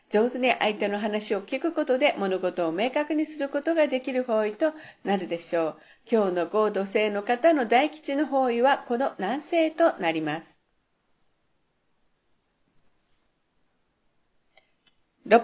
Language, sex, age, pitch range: Japanese, female, 50-69, 195-280 Hz